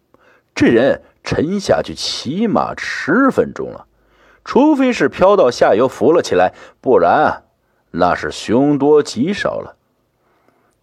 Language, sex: Chinese, male